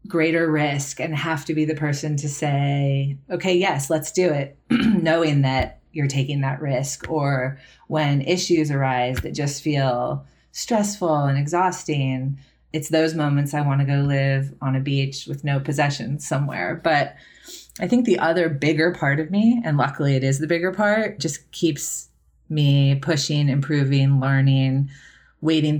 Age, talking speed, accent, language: 30-49, 160 wpm, American, English